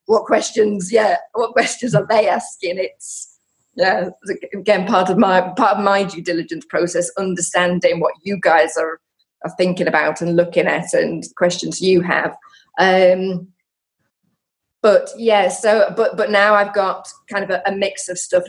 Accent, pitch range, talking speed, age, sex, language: British, 175-210 Hz, 165 wpm, 30-49, female, English